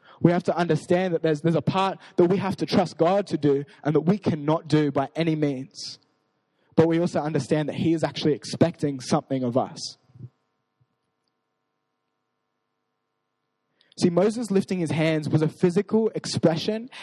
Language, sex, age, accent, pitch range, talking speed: English, male, 20-39, Australian, 155-195 Hz, 160 wpm